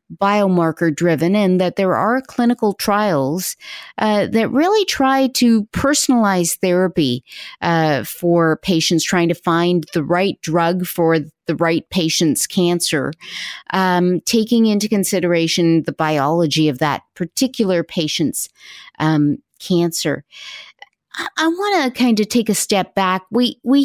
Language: English